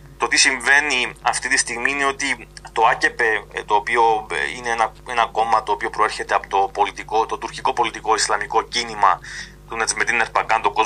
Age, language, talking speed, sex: 30-49, Greek, 150 wpm, male